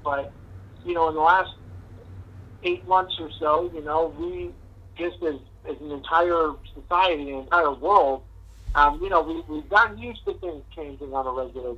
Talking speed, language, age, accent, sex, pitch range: 180 wpm, English, 50-69, American, male, 105-170 Hz